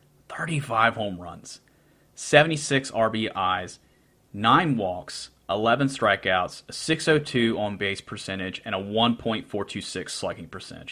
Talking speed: 105 wpm